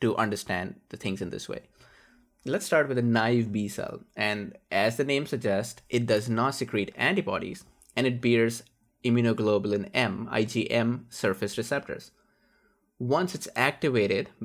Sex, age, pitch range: male, 20-39, 105-125 Hz